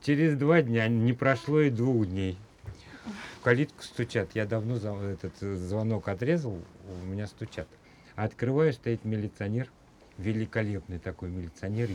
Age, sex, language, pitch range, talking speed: 50-69, male, Russian, 95-120 Hz, 125 wpm